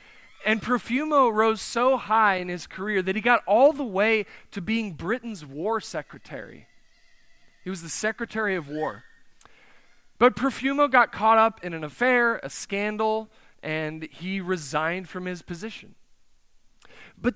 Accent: American